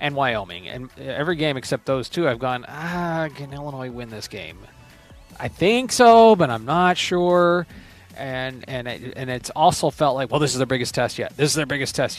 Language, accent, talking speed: English, American, 210 wpm